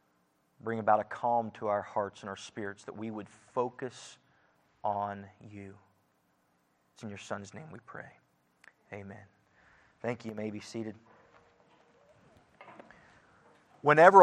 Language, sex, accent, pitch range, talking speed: English, male, American, 120-165 Hz, 130 wpm